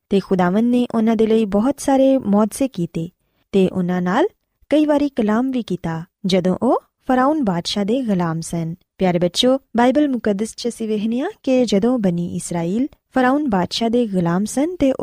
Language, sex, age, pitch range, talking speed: Punjabi, female, 20-39, 180-255 Hz, 150 wpm